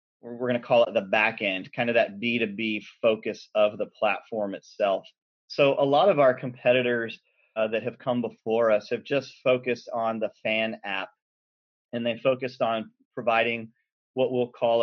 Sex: male